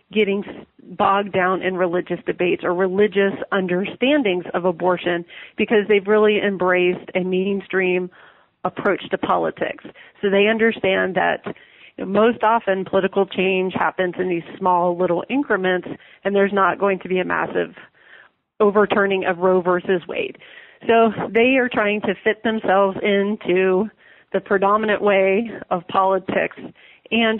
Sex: female